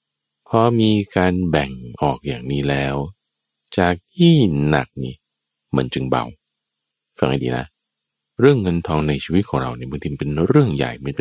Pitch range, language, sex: 70-100 Hz, Thai, male